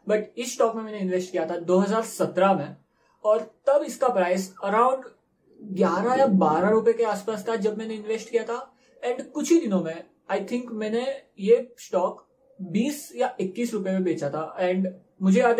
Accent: native